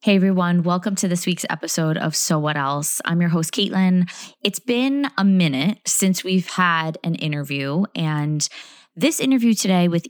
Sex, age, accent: female, 20-39, American